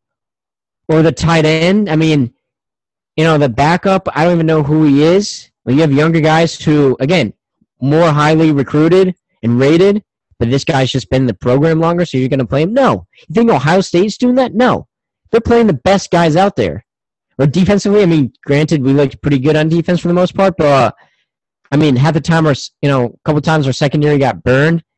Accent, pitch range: American, 130-175 Hz